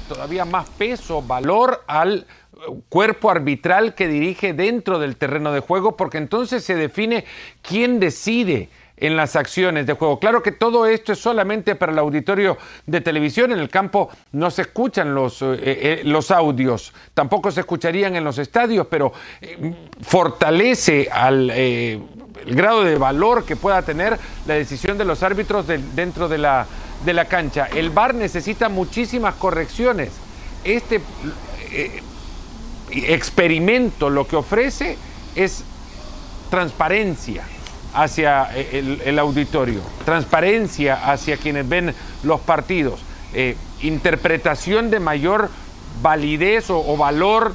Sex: male